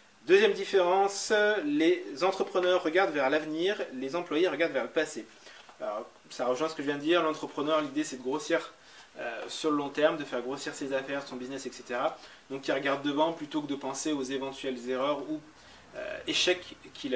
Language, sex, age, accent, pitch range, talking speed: French, male, 20-39, French, 130-160 Hz, 190 wpm